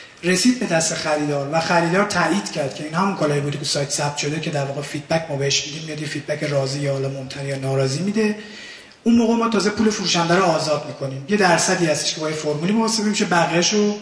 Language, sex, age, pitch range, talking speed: Persian, male, 30-49, 150-180 Hz, 220 wpm